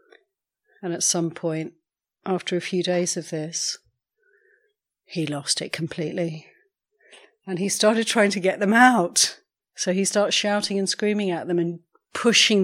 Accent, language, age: British, English, 40-59